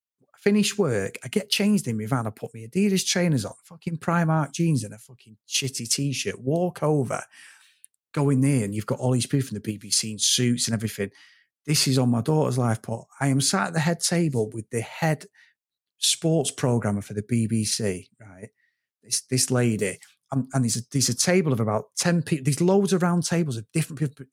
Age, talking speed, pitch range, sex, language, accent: 30-49, 205 wpm, 120-165 Hz, male, English, British